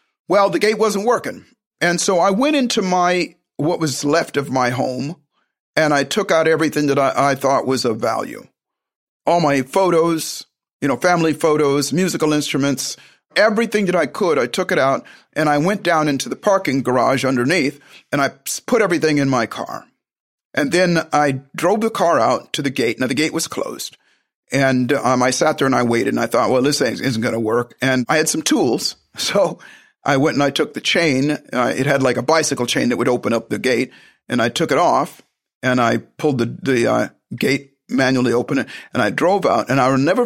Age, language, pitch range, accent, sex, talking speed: 50-69, English, 135-180 Hz, American, male, 215 wpm